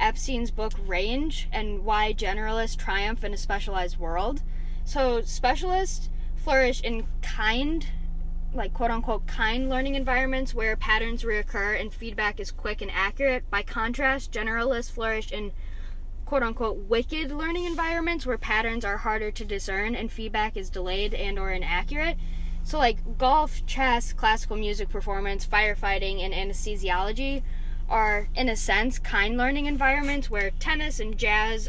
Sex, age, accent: female, 10-29, American